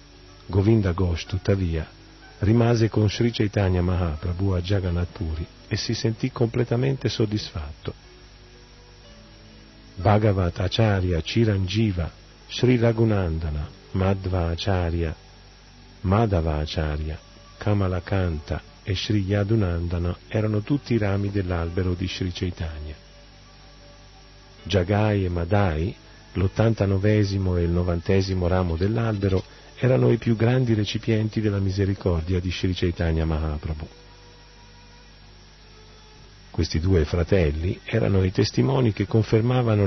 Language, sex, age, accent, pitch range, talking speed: Italian, male, 40-59, native, 90-110 Hz, 95 wpm